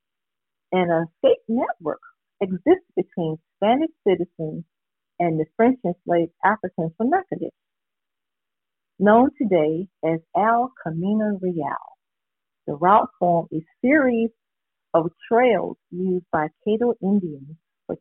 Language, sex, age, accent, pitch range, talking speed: English, female, 50-69, American, 170-230 Hz, 110 wpm